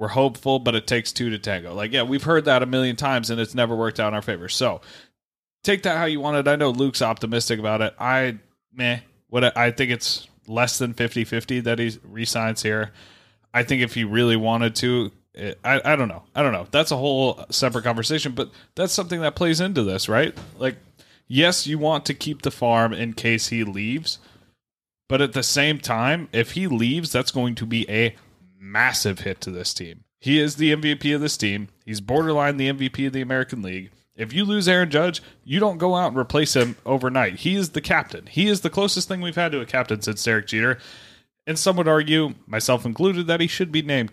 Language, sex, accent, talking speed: English, male, American, 225 wpm